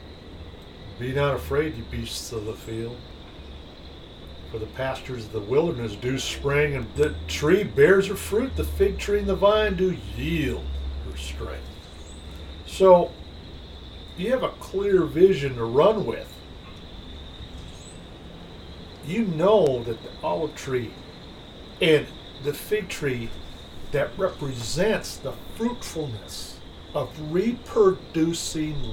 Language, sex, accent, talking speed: English, male, American, 120 wpm